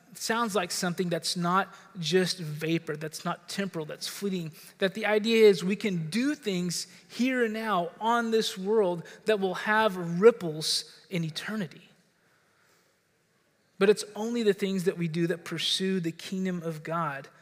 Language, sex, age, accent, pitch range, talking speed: English, male, 20-39, American, 170-205 Hz, 160 wpm